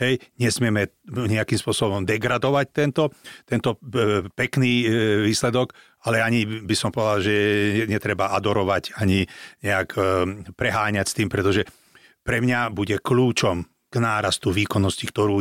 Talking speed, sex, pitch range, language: 120 wpm, male, 105-125 Hz, Slovak